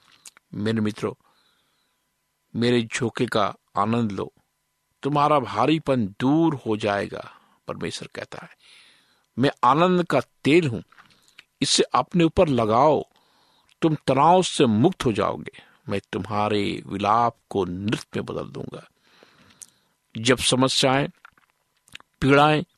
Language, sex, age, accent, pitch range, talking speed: Hindi, male, 50-69, native, 110-140 Hz, 110 wpm